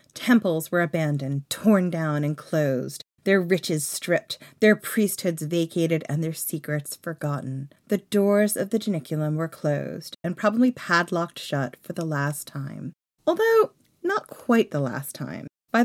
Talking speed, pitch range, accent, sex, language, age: 150 wpm, 155-210 Hz, American, female, English, 30-49